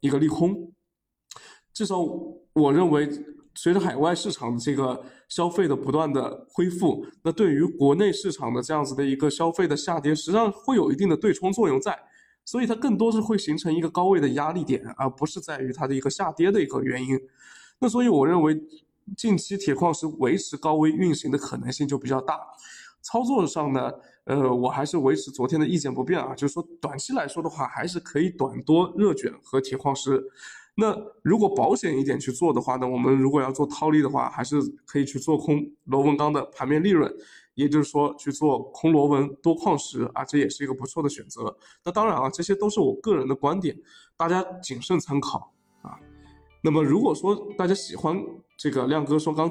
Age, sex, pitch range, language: 20-39, male, 135-175 Hz, Chinese